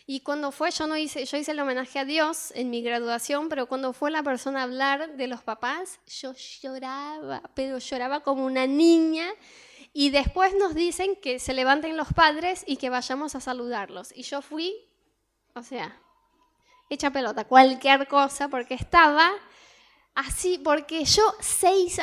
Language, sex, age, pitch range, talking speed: Spanish, female, 10-29, 255-330 Hz, 165 wpm